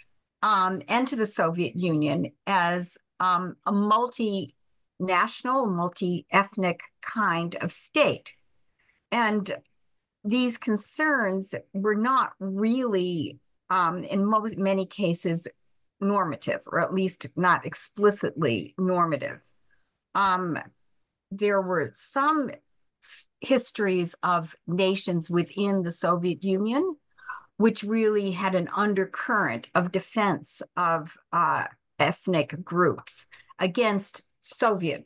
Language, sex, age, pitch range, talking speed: English, female, 50-69, 175-225 Hz, 95 wpm